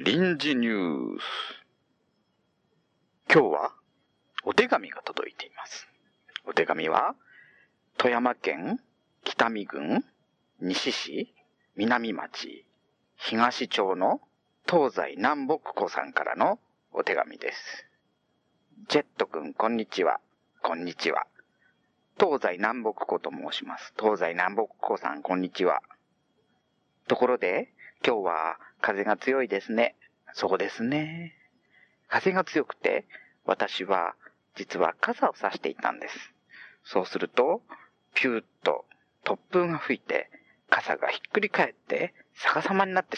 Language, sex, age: Japanese, male, 40-59